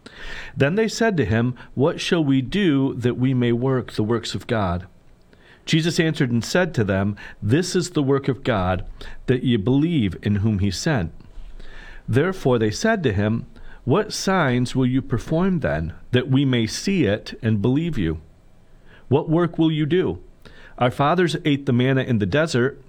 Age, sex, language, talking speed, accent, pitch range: 40-59, male, English, 180 wpm, American, 105-150 Hz